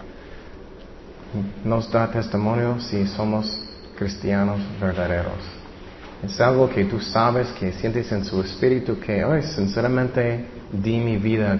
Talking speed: 125 wpm